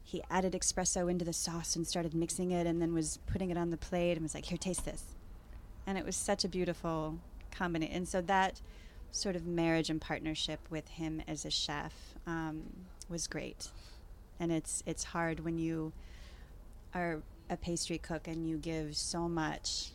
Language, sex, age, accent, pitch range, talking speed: English, female, 30-49, American, 155-170 Hz, 185 wpm